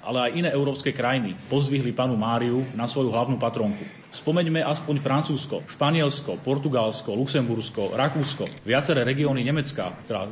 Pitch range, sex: 115-140 Hz, male